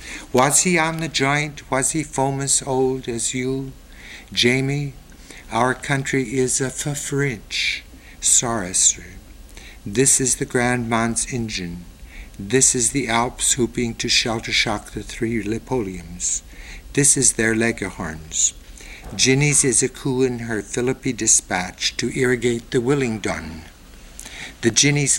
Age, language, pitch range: 60-79, English, 105-130 Hz